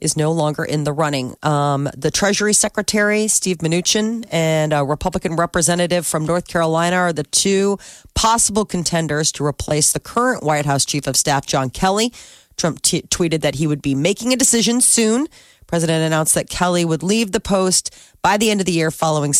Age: 40-59